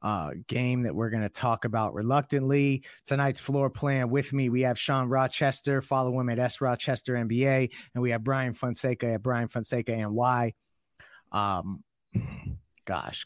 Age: 30-49